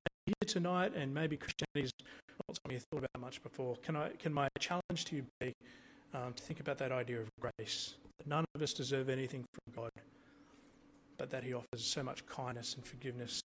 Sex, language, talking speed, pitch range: male, English, 205 wpm, 120-140 Hz